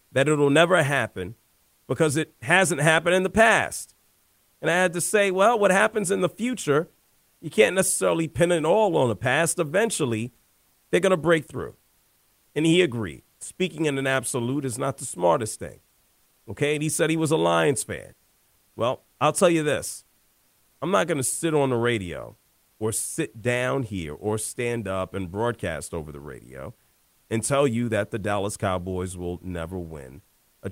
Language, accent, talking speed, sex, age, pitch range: English, American, 185 wpm, male, 40-59, 110-160 Hz